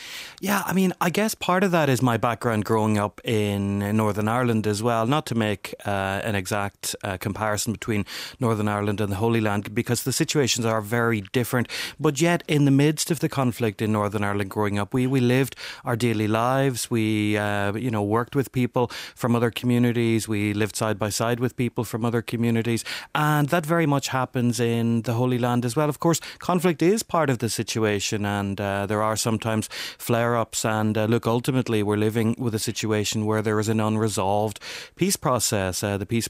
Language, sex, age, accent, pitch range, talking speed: English, male, 30-49, Irish, 105-125 Hz, 205 wpm